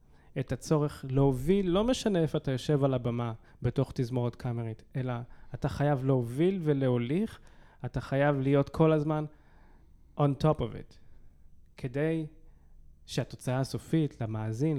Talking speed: 125 wpm